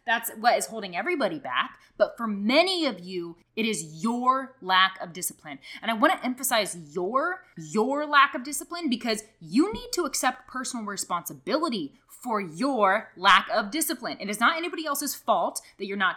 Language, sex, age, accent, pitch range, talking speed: English, female, 20-39, American, 215-300 Hz, 180 wpm